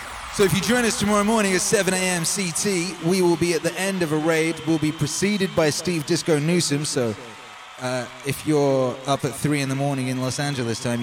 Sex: male